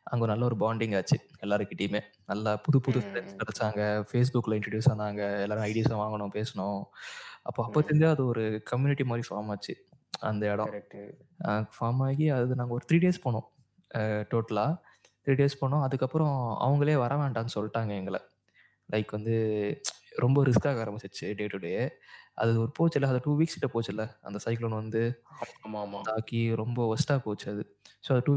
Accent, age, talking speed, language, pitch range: native, 20-39, 100 wpm, Tamil, 105-135 Hz